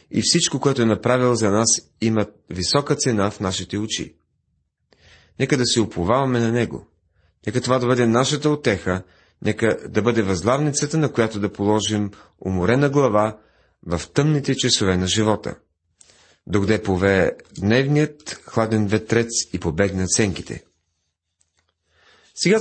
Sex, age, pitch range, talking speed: male, 40-59, 100-135 Hz, 135 wpm